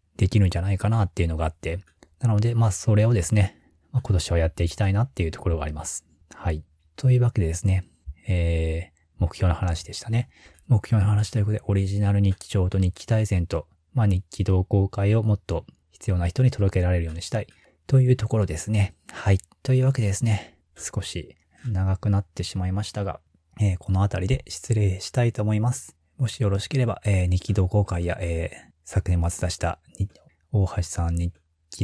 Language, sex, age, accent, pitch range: Japanese, male, 20-39, native, 85-105 Hz